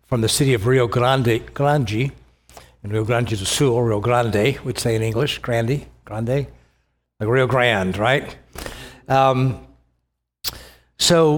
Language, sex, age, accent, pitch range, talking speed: English, male, 60-79, American, 115-150 Hz, 140 wpm